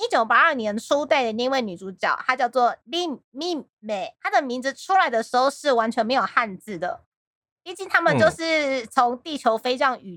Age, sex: 20-39, female